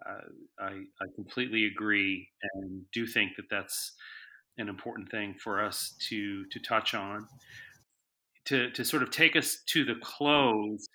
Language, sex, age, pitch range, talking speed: English, male, 30-49, 110-125 Hz, 155 wpm